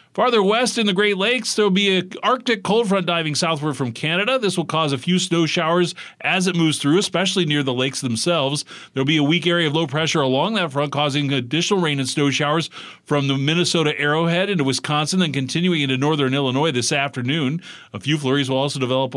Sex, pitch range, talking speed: male, 135-185 Hz, 220 wpm